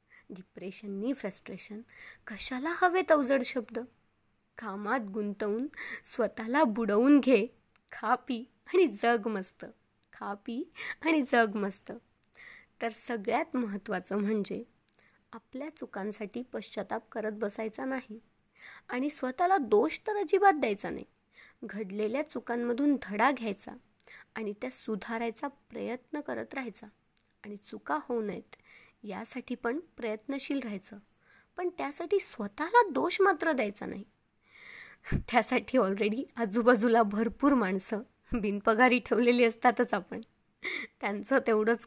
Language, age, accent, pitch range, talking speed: Marathi, 20-39, native, 210-255 Hz, 105 wpm